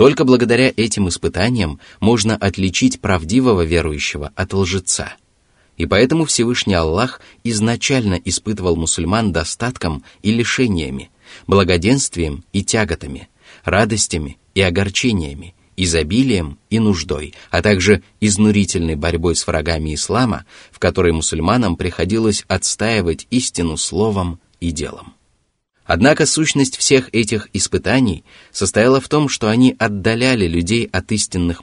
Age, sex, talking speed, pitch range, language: 30-49, male, 110 wpm, 85-120 Hz, Russian